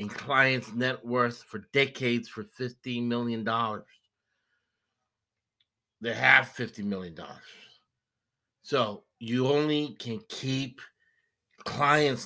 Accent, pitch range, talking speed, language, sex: American, 115-135 Hz, 95 wpm, English, male